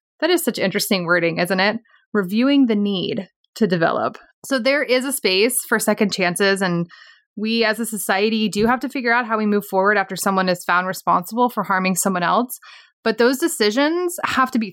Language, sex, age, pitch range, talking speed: English, female, 20-39, 190-255 Hz, 200 wpm